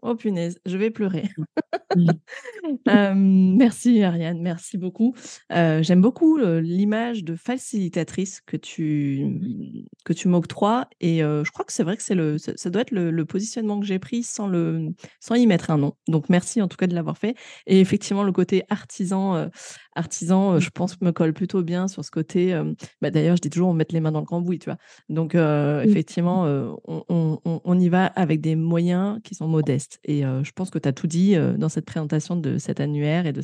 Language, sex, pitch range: French, female, 165-210 Hz